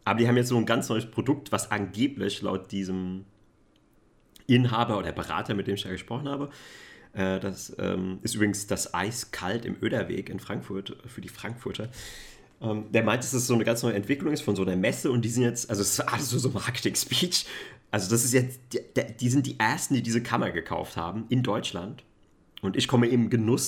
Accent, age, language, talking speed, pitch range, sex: German, 30-49, German, 215 wpm, 100-120 Hz, male